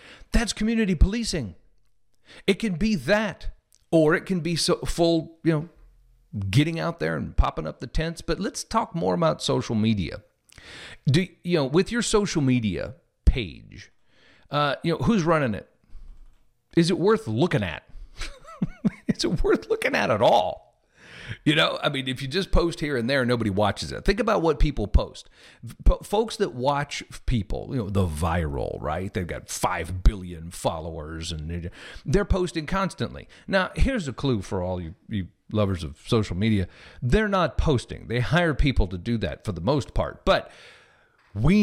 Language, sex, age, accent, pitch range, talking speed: English, male, 50-69, American, 105-170 Hz, 170 wpm